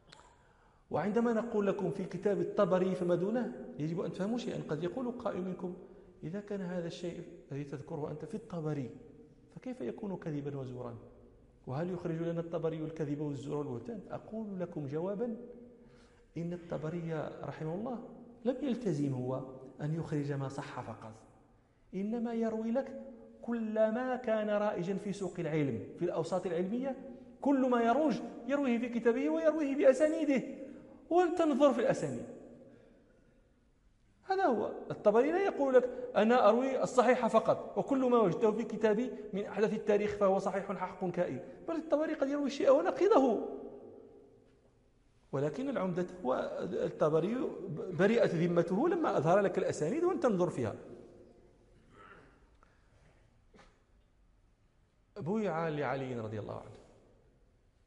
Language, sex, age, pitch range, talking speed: Danish, male, 40-59, 150-240 Hz, 125 wpm